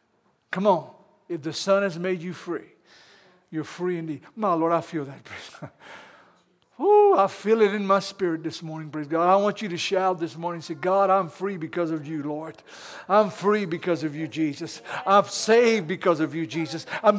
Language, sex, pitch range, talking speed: English, male, 160-200 Hz, 200 wpm